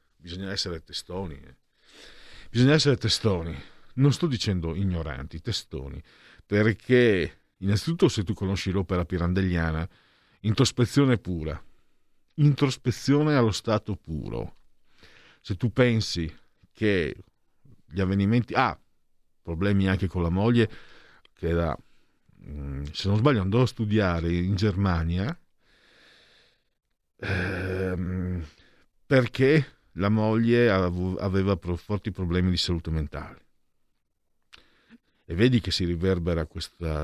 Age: 50-69